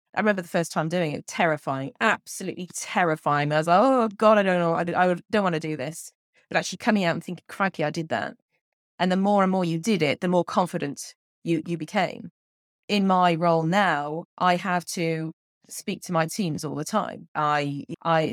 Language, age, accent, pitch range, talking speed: English, 20-39, British, 155-200 Hz, 210 wpm